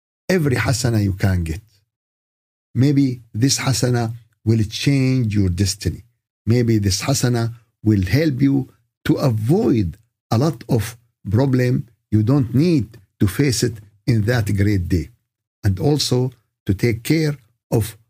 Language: Arabic